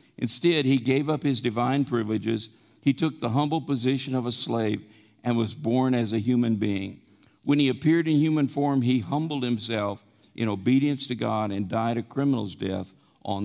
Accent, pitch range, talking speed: American, 110-140 Hz, 185 wpm